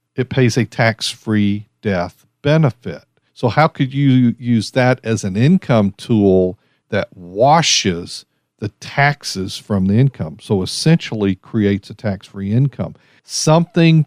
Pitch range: 110-140 Hz